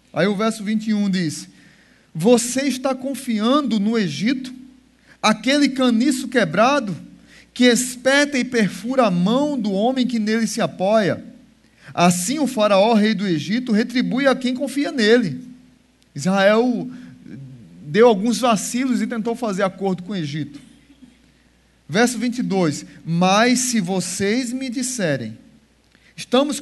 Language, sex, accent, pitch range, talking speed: Portuguese, male, Brazilian, 185-245 Hz, 125 wpm